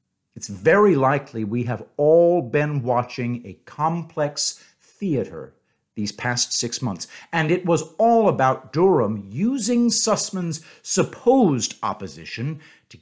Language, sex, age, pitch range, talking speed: English, male, 50-69, 115-165 Hz, 120 wpm